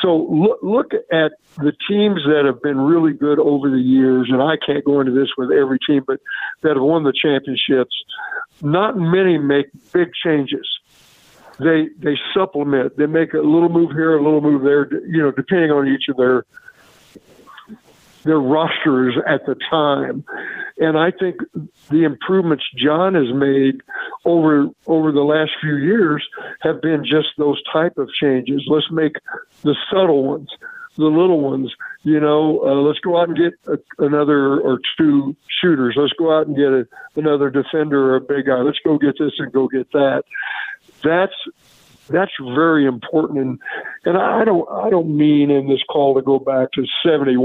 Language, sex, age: English, male, 60-79